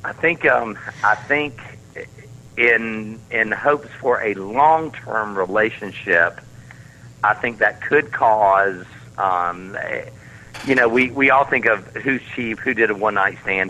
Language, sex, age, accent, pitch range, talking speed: English, male, 50-69, American, 100-125 Hz, 155 wpm